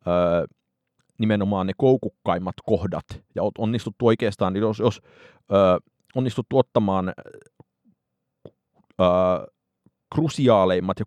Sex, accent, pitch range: male, native, 95-120 Hz